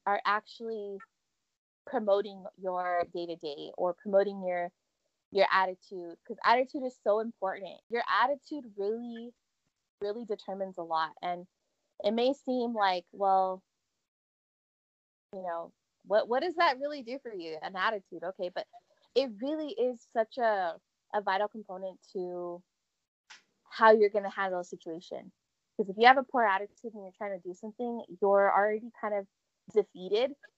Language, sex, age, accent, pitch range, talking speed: English, female, 20-39, American, 185-230 Hz, 155 wpm